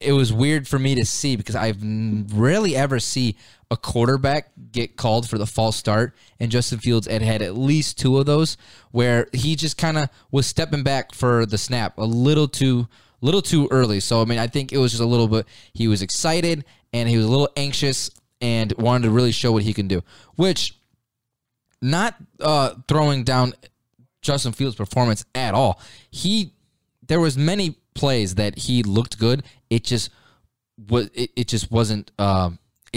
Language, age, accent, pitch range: English, 20-39, American, 110-135 Hz